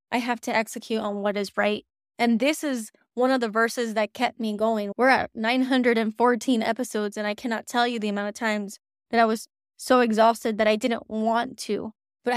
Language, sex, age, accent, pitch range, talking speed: English, female, 20-39, American, 215-240 Hz, 210 wpm